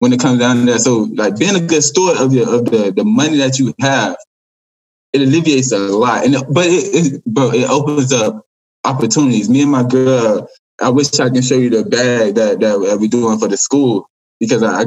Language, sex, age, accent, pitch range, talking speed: English, male, 20-39, American, 125-150 Hz, 220 wpm